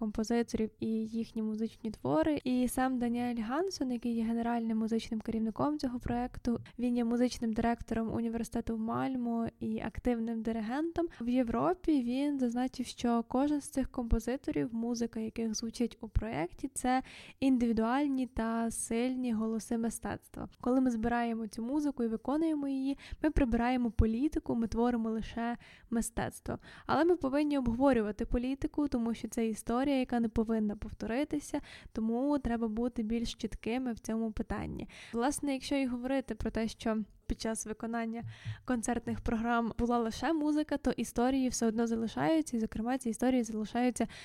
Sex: female